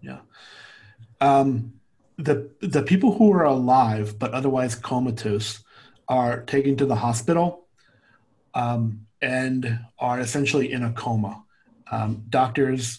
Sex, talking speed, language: male, 115 wpm, English